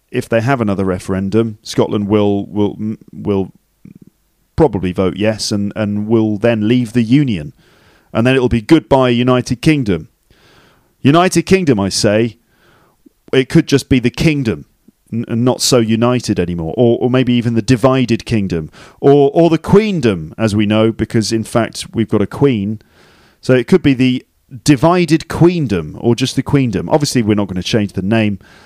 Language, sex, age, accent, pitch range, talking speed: English, male, 40-59, British, 105-130 Hz, 170 wpm